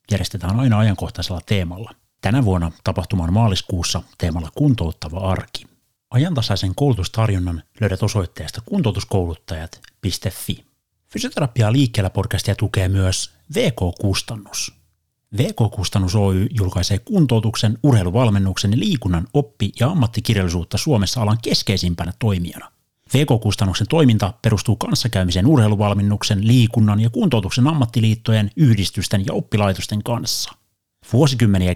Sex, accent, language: male, native, Finnish